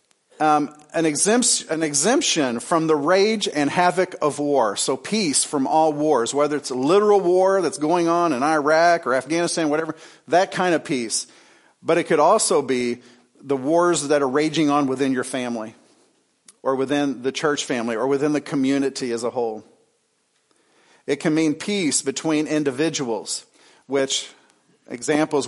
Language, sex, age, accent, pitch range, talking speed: English, male, 50-69, American, 135-165 Hz, 160 wpm